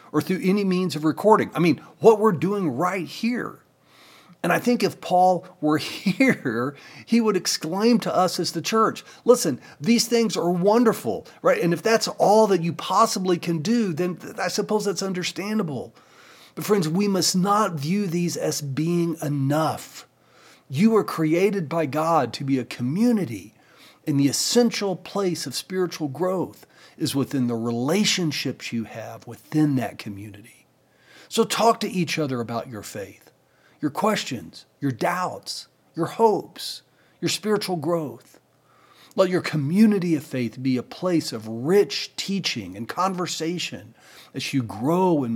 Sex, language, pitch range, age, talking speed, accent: male, English, 140-200 Hz, 40-59, 155 wpm, American